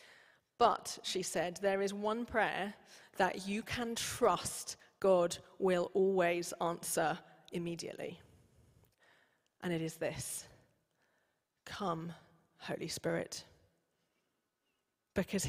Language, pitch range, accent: English, 175-200 Hz, British